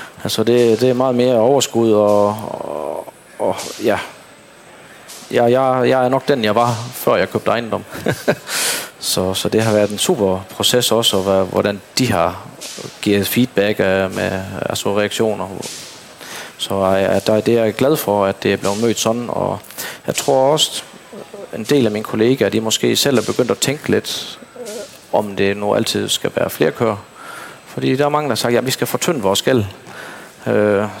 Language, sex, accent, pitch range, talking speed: Danish, male, native, 95-115 Hz, 180 wpm